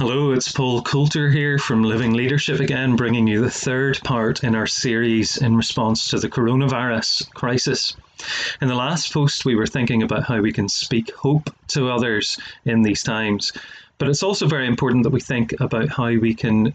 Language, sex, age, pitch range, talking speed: English, male, 30-49, 115-135 Hz, 190 wpm